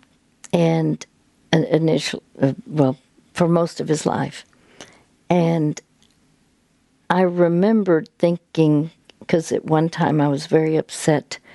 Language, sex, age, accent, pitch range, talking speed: English, female, 60-79, American, 155-185 Hz, 105 wpm